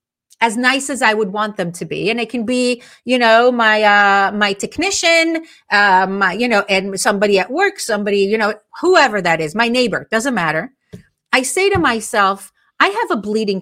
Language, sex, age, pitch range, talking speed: English, female, 40-59, 200-255 Hz, 200 wpm